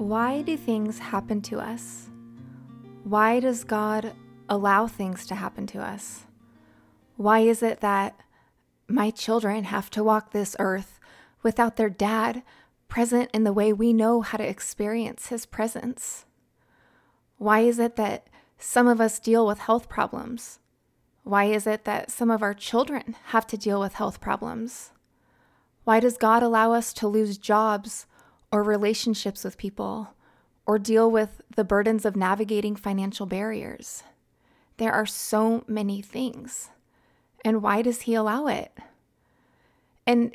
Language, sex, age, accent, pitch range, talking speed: English, female, 20-39, American, 210-235 Hz, 145 wpm